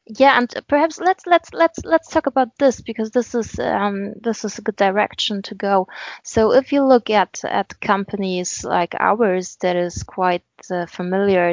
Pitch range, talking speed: 180-240 Hz, 180 wpm